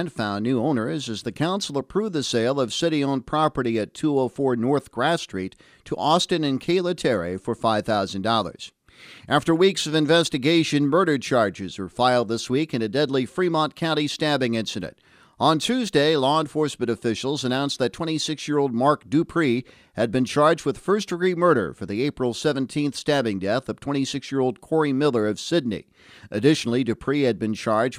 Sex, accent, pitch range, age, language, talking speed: male, American, 115-150 Hz, 50-69, English, 160 wpm